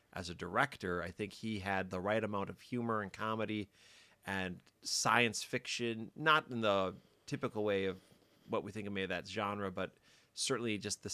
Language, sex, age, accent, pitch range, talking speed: English, male, 30-49, American, 95-115 Hz, 170 wpm